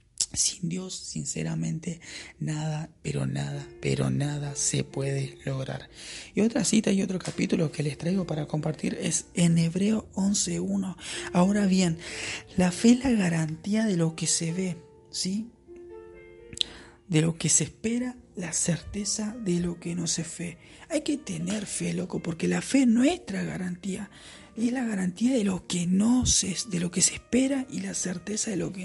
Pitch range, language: 160-200 Hz, Spanish